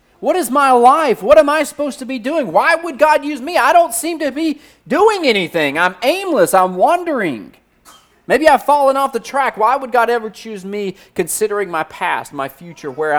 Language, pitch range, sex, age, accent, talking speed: English, 145-235 Hz, male, 40-59, American, 205 wpm